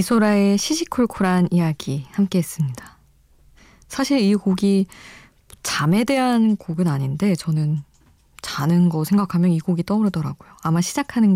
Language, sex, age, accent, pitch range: Korean, female, 20-39, native, 155-210 Hz